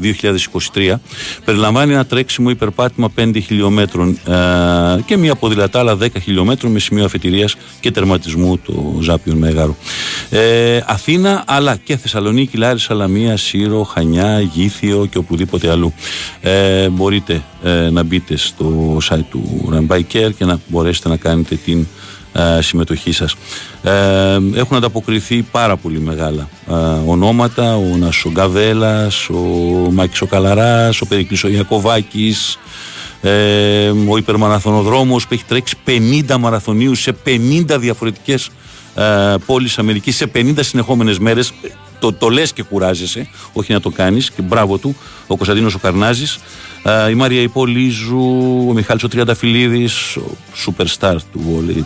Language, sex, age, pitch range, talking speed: Greek, male, 50-69, 90-120 Hz, 125 wpm